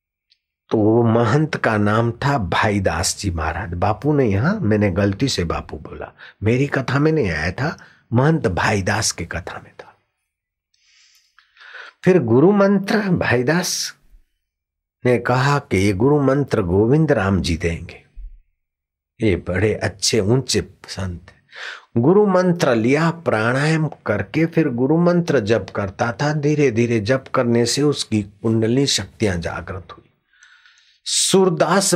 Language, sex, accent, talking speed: Hindi, male, native, 115 wpm